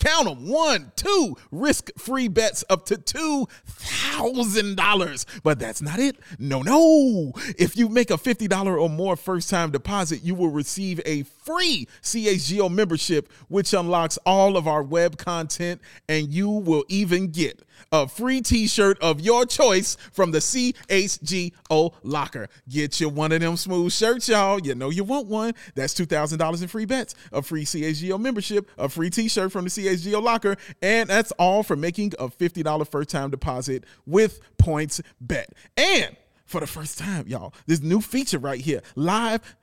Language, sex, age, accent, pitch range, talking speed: English, male, 30-49, American, 155-225 Hz, 160 wpm